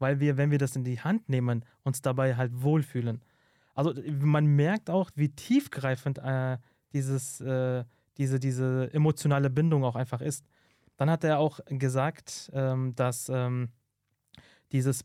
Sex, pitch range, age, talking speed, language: male, 125-150 Hz, 30-49, 150 wpm, German